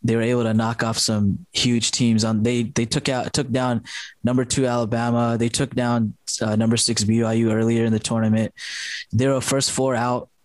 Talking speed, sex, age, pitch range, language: 200 wpm, male, 20-39, 110-125 Hz, English